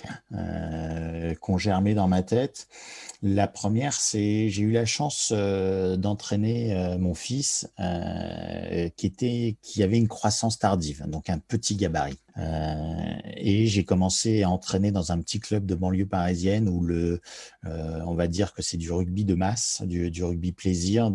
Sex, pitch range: male, 90-105 Hz